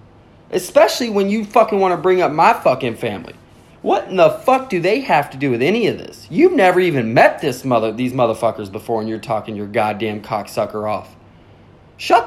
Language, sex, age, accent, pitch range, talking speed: English, male, 20-39, American, 110-160 Hz, 200 wpm